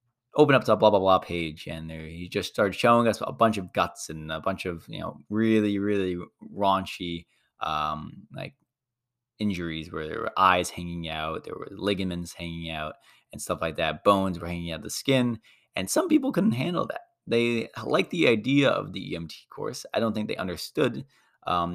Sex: male